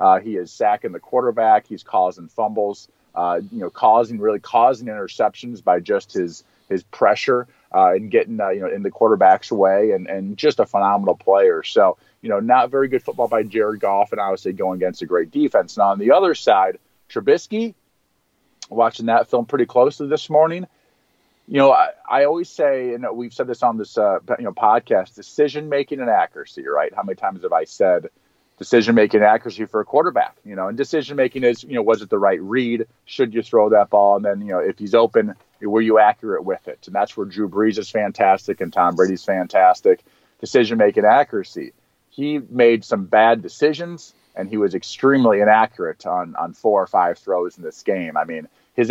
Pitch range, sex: 105-155 Hz, male